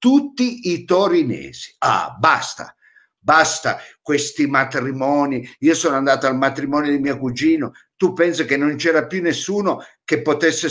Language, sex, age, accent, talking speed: Italian, male, 60-79, native, 140 wpm